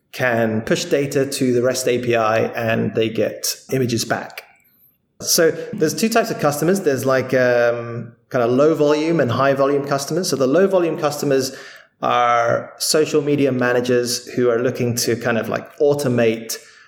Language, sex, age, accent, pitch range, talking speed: English, male, 20-39, British, 115-140 Hz, 165 wpm